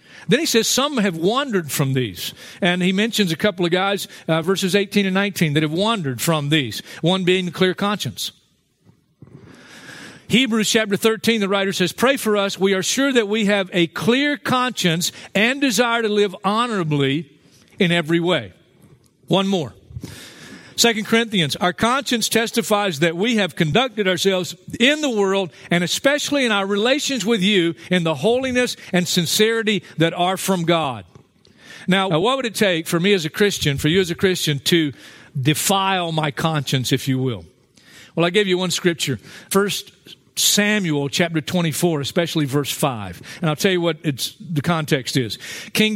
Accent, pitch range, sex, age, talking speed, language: American, 150-200 Hz, male, 50-69, 170 wpm, English